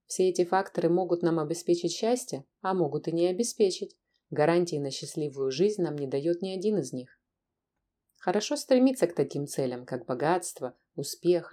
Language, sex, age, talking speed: Russian, female, 20-39, 160 wpm